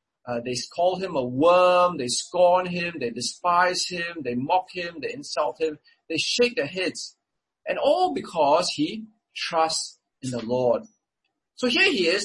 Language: English